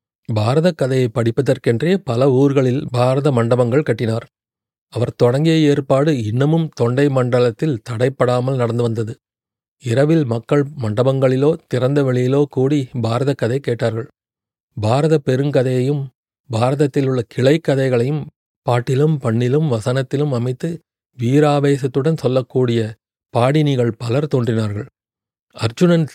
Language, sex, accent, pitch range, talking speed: Tamil, male, native, 120-145 Hz, 90 wpm